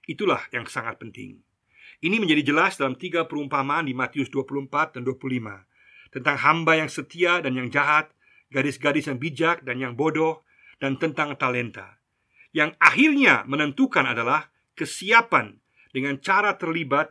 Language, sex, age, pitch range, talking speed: Indonesian, male, 50-69, 130-165 Hz, 135 wpm